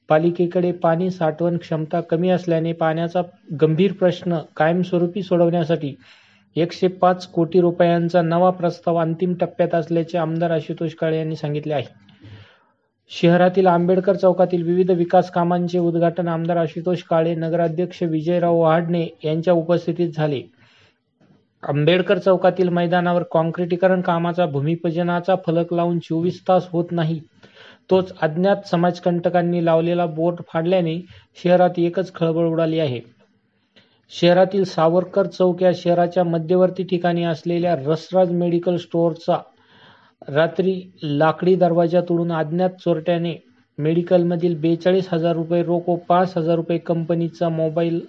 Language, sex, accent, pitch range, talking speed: Marathi, male, native, 165-180 Hz, 115 wpm